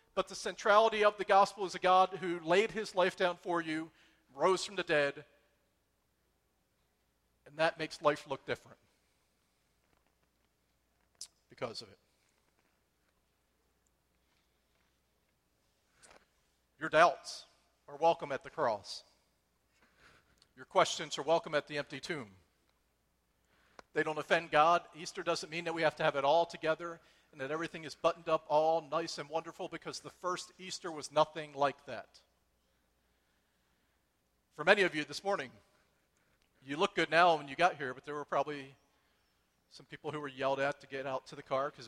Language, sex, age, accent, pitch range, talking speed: English, male, 40-59, American, 125-175 Hz, 155 wpm